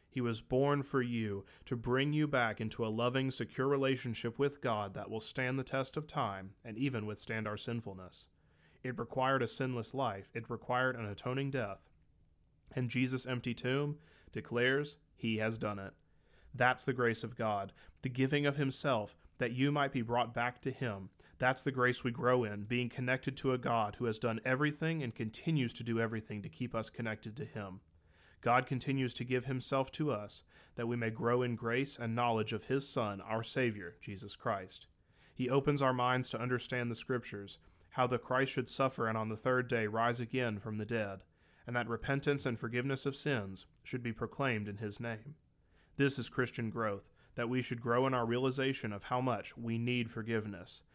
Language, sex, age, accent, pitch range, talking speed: English, male, 30-49, American, 110-130 Hz, 195 wpm